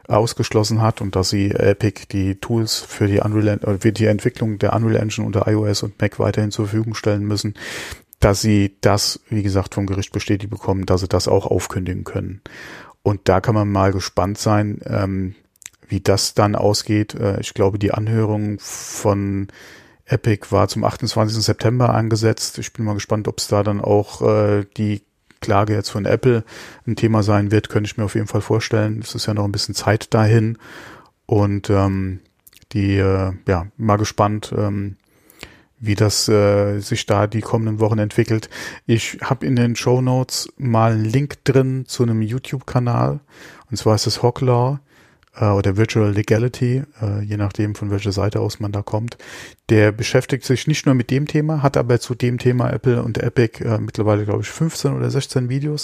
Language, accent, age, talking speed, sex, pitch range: German, German, 30-49, 180 wpm, male, 100-120 Hz